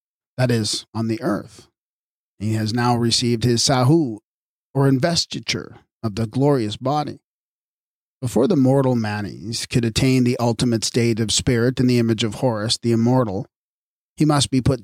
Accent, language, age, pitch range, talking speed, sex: American, English, 40-59, 115-145 Hz, 160 wpm, male